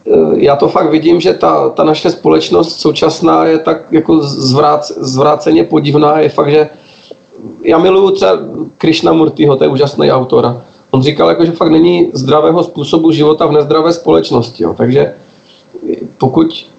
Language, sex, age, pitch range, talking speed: Slovak, male, 40-59, 140-160 Hz, 150 wpm